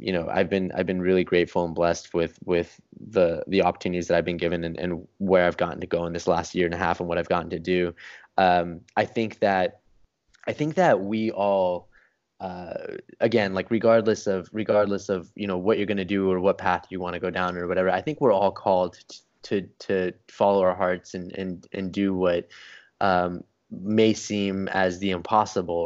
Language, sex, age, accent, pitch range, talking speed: English, male, 10-29, American, 90-105 Hz, 215 wpm